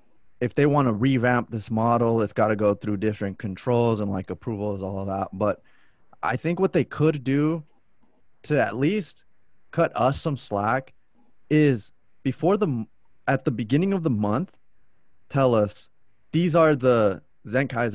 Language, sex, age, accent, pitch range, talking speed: English, male, 20-39, American, 110-135 Hz, 165 wpm